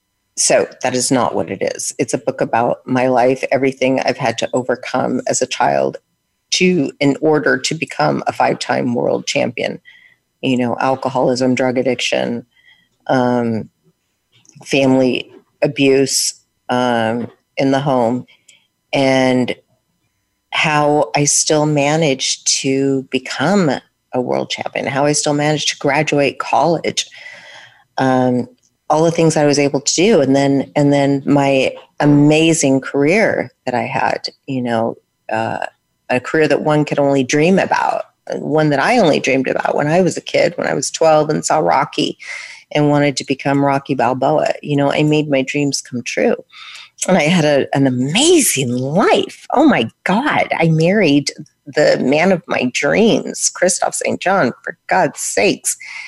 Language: English